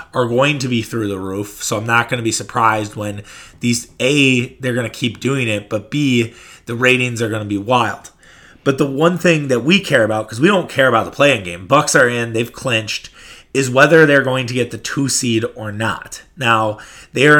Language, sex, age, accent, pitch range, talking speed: English, male, 30-49, American, 115-140 Hz, 230 wpm